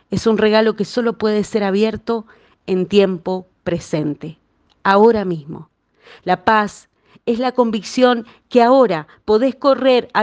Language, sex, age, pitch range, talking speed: Spanish, female, 40-59, 180-225 Hz, 135 wpm